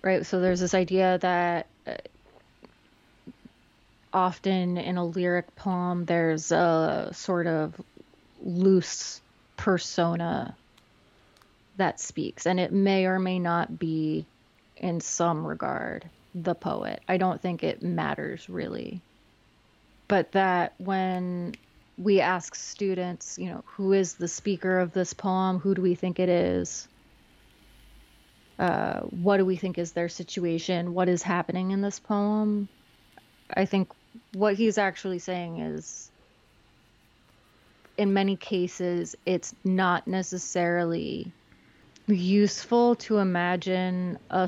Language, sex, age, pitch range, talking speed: English, female, 30-49, 170-190 Hz, 120 wpm